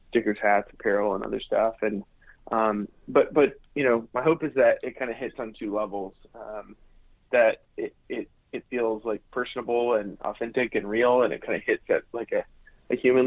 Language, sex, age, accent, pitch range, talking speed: English, male, 20-39, American, 105-125 Hz, 205 wpm